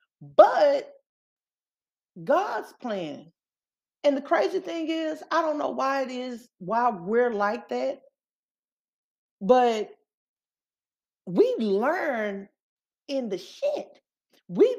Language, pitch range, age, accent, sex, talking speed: English, 205-310 Hz, 40-59, American, female, 100 wpm